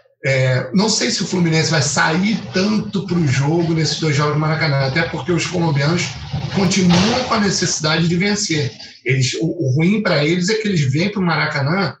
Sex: male